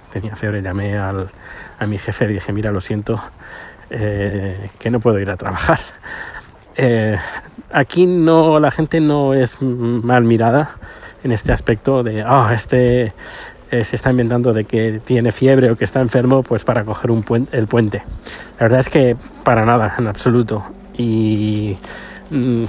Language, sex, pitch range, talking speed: Spanish, male, 115-140 Hz, 170 wpm